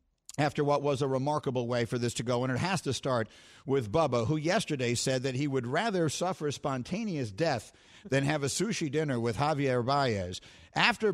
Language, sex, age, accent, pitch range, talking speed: English, male, 50-69, American, 140-225 Hz, 195 wpm